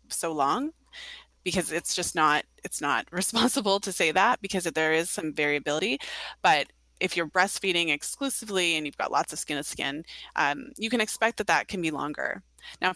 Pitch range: 150-190 Hz